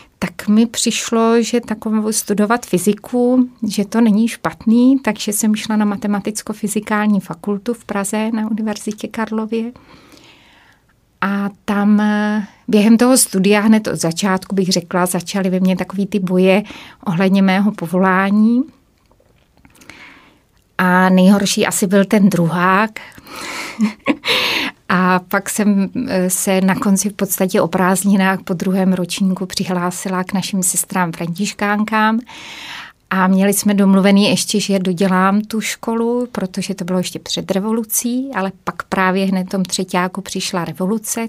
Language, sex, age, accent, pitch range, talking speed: Czech, female, 30-49, native, 190-220 Hz, 130 wpm